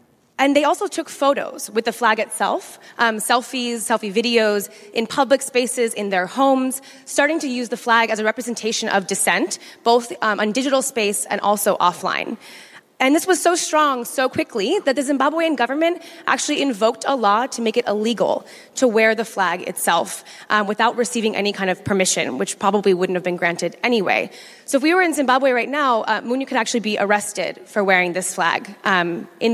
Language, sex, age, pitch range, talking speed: German, female, 20-39, 205-260 Hz, 195 wpm